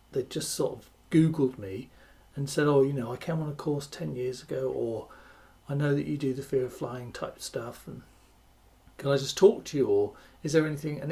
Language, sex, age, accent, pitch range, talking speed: English, male, 40-59, British, 125-160 Hz, 230 wpm